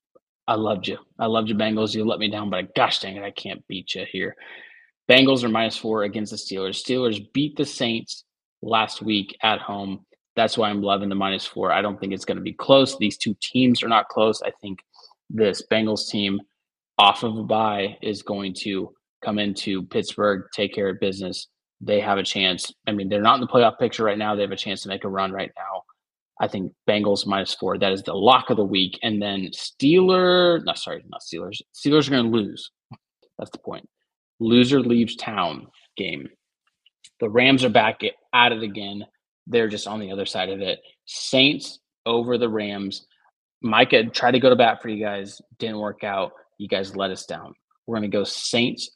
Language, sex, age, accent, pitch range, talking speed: English, male, 20-39, American, 100-115 Hz, 210 wpm